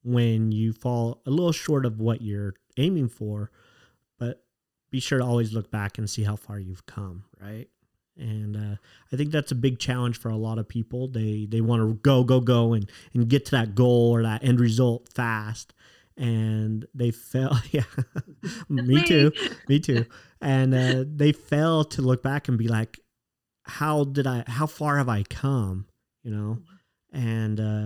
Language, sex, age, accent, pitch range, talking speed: English, male, 30-49, American, 110-135 Hz, 185 wpm